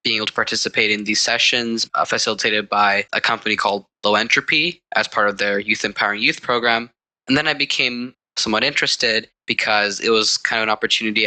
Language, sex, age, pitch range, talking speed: English, male, 10-29, 110-130 Hz, 185 wpm